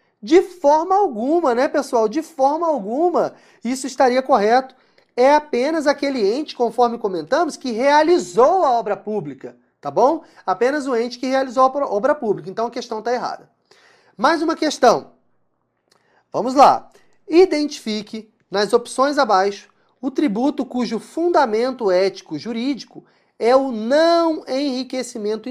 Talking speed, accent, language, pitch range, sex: 130 wpm, Brazilian, English, 225-290 Hz, male